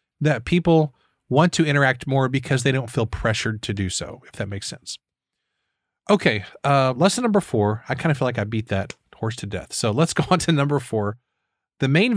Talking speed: 210 wpm